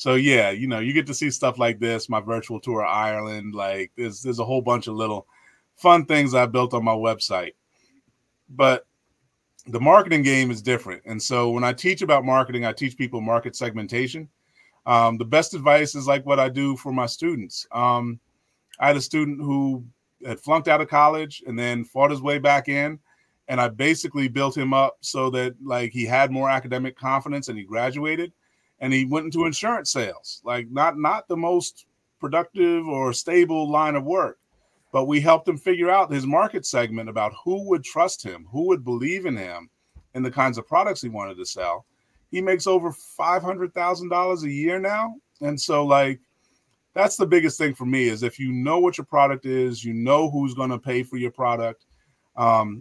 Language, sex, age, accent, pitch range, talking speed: English, male, 30-49, American, 120-150 Hz, 200 wpm